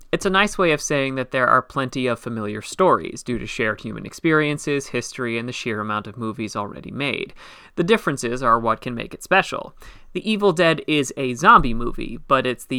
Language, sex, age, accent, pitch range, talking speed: English, male, 30-49, American, 120-170 Hz, 210 wpm